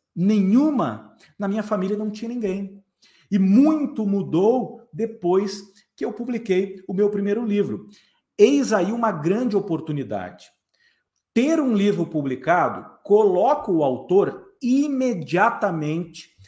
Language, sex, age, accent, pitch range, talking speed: Portuguese, male, 50-69, Brazilian, 160-220 Hz, 115 wpm